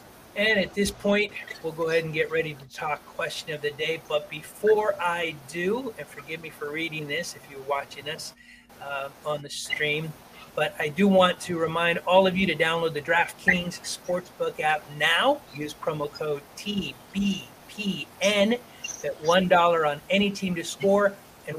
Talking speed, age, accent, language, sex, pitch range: 170 wpm, 40-59, American, English, male, 150-200 Hz